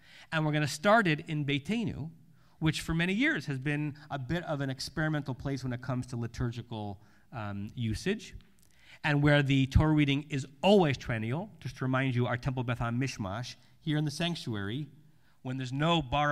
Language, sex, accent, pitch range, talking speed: English, male, American, 120-150 Hz, 190 wpm